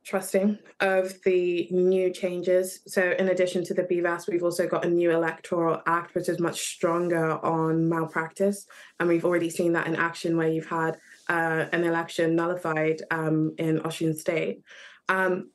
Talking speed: 165 wpm